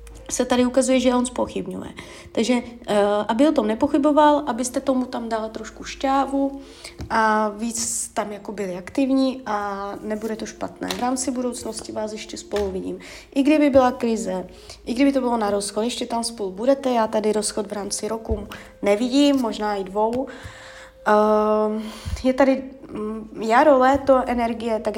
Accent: native